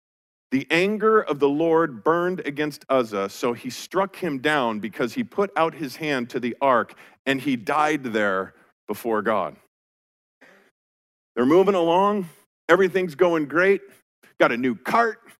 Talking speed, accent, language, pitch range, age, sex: 150 wpm, American, English, 135-190 Hz, 40-59, male